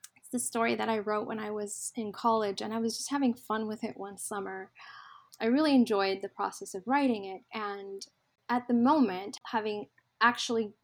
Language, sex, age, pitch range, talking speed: English, female, 10-29, 205-245 Hz, 190 wpm